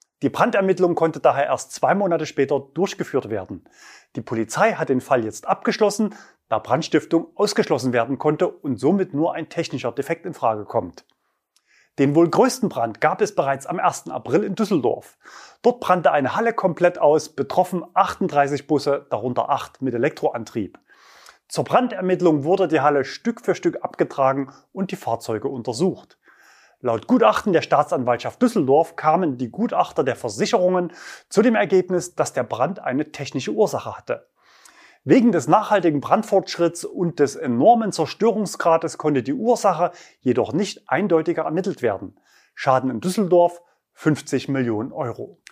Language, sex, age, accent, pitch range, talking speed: German, male, 30-49, German, 145-205 Hz, 145 wpm